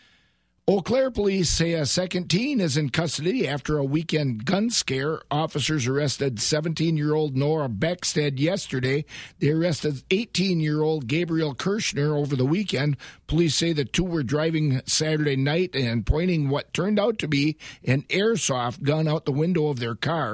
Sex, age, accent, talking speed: male, 50-69, American, 155 wpm